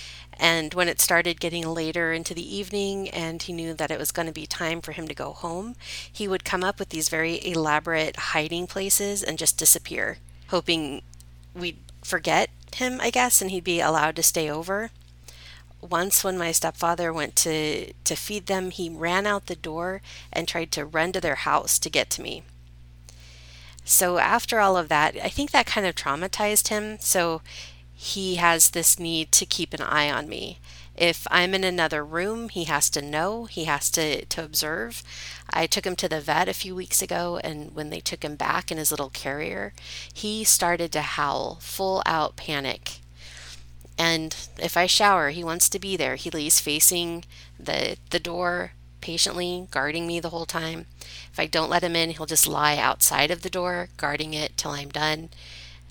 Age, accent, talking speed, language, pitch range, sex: 30-49, American, 190 wpm, English, 145-180 Hz, female